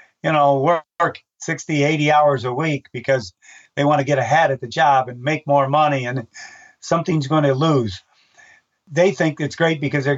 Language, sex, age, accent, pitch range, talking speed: English, male, 50-69, American, 130-160 Hz, 190 wpm